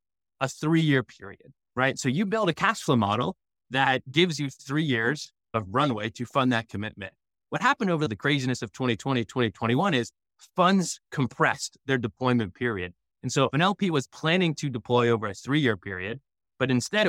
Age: 20-39